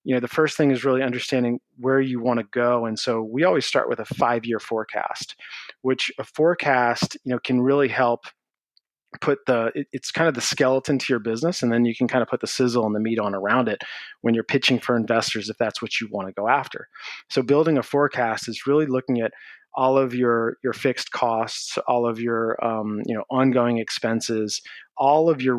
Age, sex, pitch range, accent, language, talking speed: 30-49, male, 115-130 Hz, American, English, 220 wpm